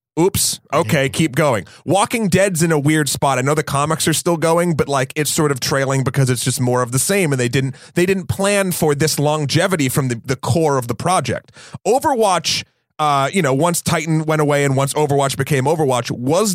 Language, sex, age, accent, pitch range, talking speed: English, male, 30-49, American, 135-165 Hz, 220 wpm